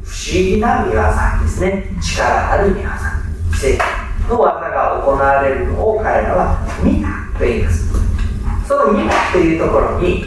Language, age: Japanese, 40-59